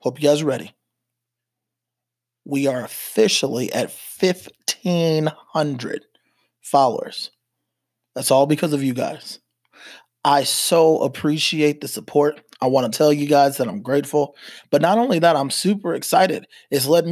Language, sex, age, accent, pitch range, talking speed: English, male, 20-39, American, 135-160 Hz, 140 wpm